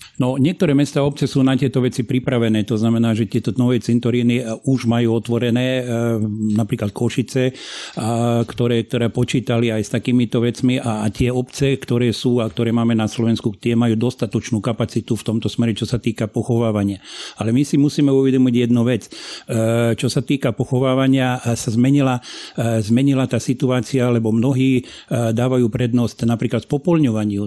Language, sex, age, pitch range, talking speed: Slovak, male, 50-69, 115-130 Hz, 155 wpm